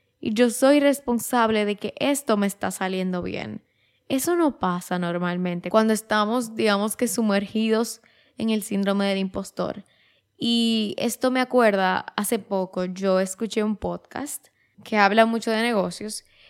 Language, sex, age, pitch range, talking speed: Spanish, female, 10-29, 200-250 Hz, 145 wpm